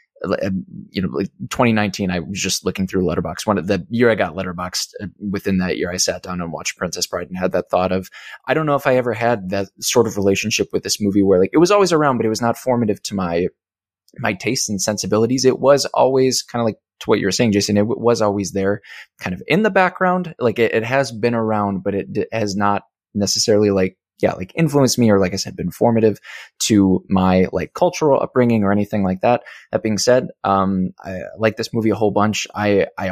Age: 20-39